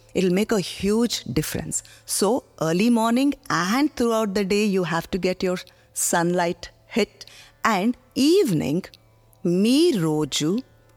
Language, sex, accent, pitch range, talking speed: Telugu, female, native, 155-210 Hz, 125 wpm